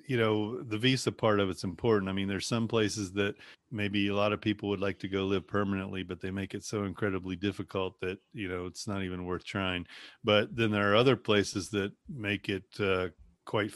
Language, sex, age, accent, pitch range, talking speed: English, male, 30-49, American, 90-105 Hz, 225 wpm